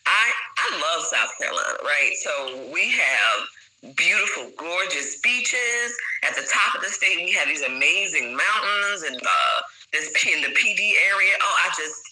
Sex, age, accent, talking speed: female, 20-39, American, 165 wpm